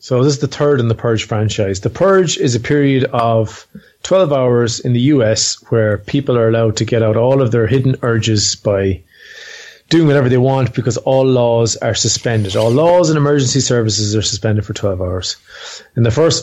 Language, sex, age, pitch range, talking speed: English, male, 30-49, 110-130 Hz, 200 wpm